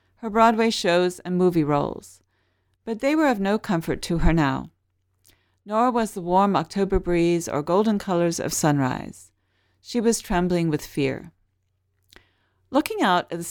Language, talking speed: English, 155 wpm